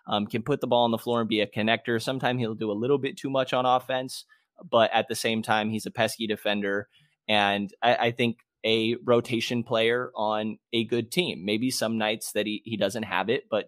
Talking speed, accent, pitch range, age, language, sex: 230 wpm, American, 110-130 Hz, 20-39, English, male